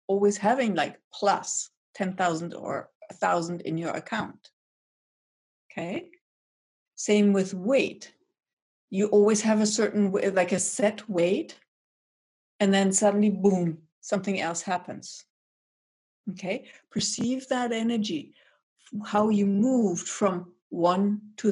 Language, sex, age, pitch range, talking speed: English, female, 60-79, 180-210 Hz, 115 wpm